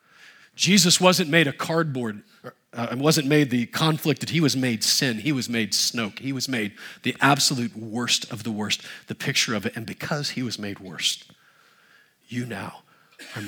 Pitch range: 135-190 Hz